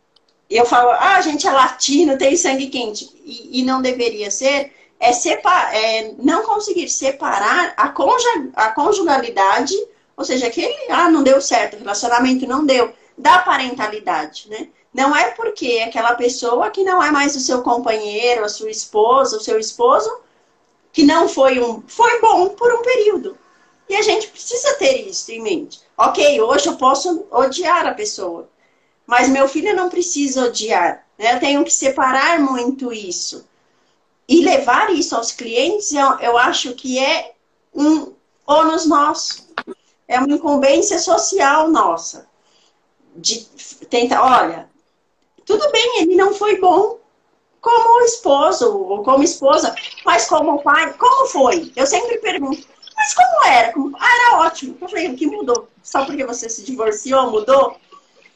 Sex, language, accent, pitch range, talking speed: female, Portuguese, Brazilian, 255-370 Hz, 155 wpm